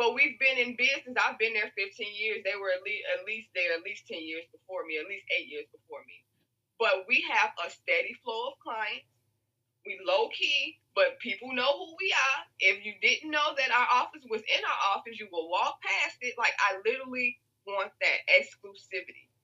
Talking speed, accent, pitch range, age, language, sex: 205 wpm, American, 180-275 Hz, 20-39, English, female